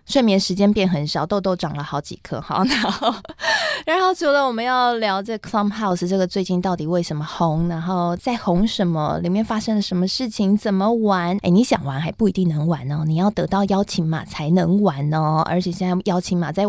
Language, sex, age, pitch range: Chinese, female, 20-39, 175-230 Hz